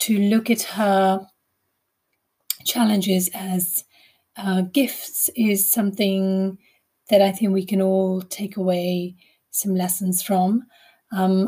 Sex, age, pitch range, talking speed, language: female, 30-49, 190-225 Hz, 115 wpm, English